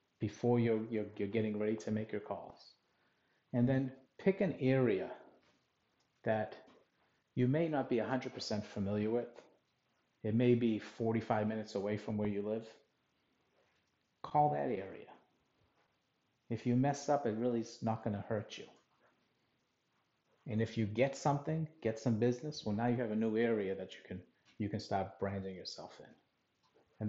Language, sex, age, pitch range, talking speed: English, male, 40-59, 105-120 Hz, 160 wpm